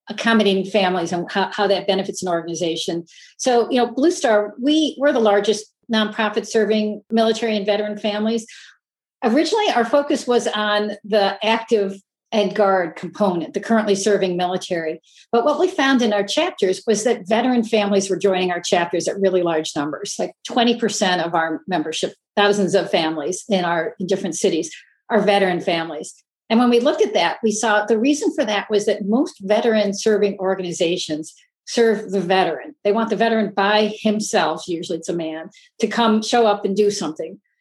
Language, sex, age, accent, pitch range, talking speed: English, female, 50-69, American, 195-235 Hz, 175 wpm